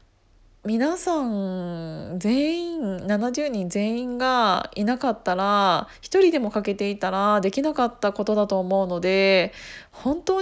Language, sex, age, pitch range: Japanese, female, 20-39, 200-250 Hz